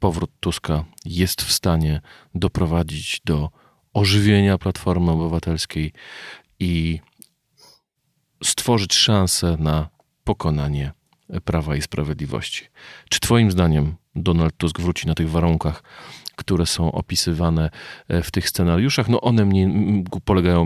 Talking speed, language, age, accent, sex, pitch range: 105 wpm, Polish, 40-59, native, male, 80-95 Hz